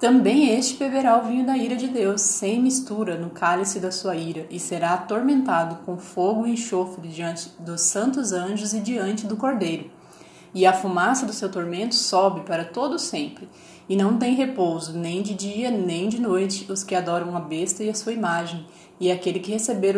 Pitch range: 170-220 Hz